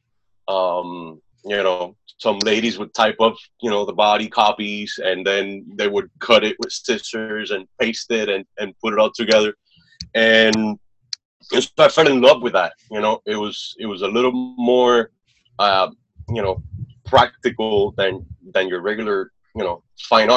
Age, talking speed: 30-49, 170 wpm